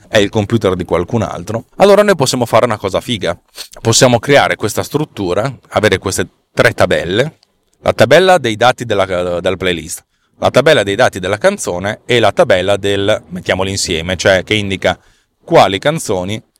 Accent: native